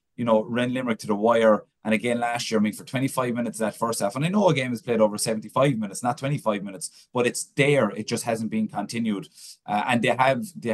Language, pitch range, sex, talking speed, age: English, 110-130 Hz, male, 255 wpm, 30-49